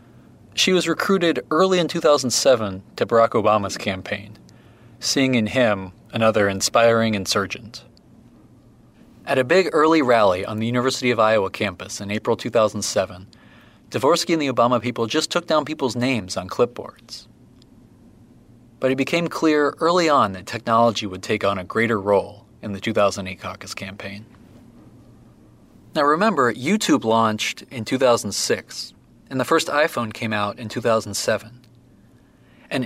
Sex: male